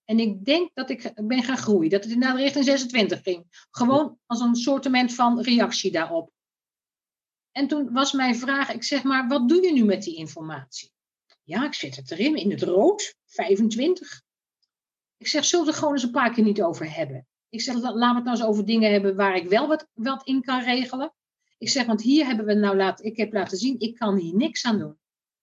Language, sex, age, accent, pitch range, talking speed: Dutch, female, 50-69, Dutch, 200-275 Hz, 225 wpm